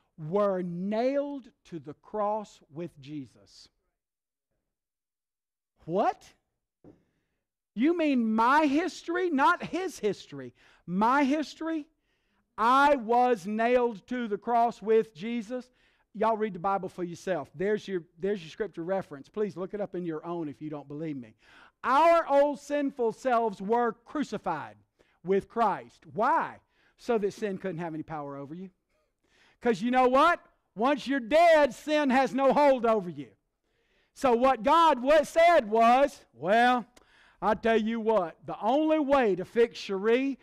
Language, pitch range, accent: English, 180-265 Hz, American